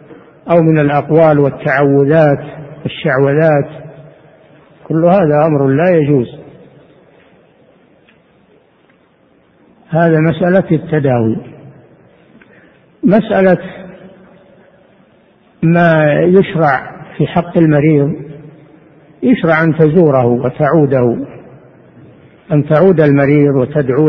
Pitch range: 145-165 Hz